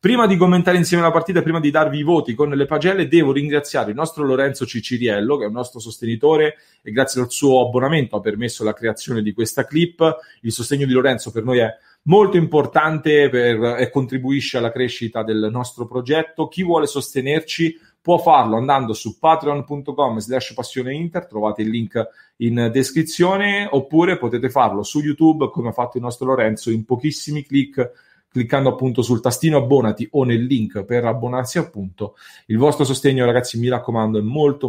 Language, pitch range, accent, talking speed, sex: English, 120-155 Hz, Italian, 175 wpm, male